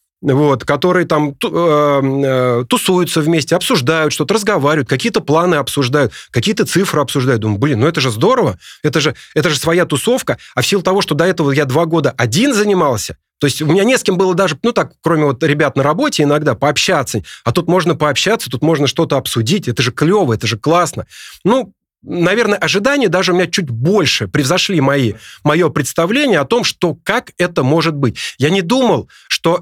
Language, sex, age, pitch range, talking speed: Russian, male, 30-49, 145-195 Hz, 180 wpm